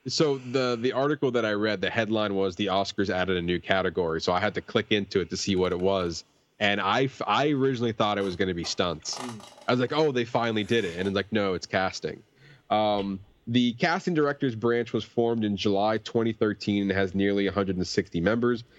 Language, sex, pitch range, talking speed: English, male, 100-125 Hz, 215 wpm